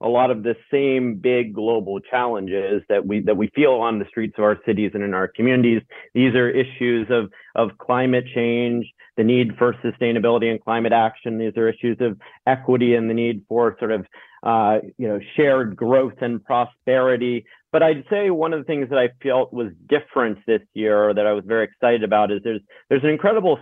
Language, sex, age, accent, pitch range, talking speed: English, male, 40-59, American, 110-125 Hz, 205 wpm